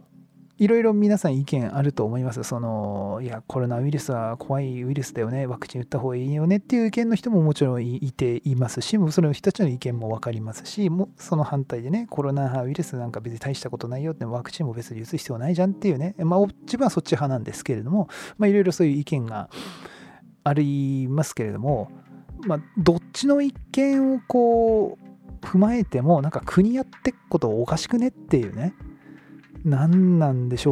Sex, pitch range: male, 120-180 Hz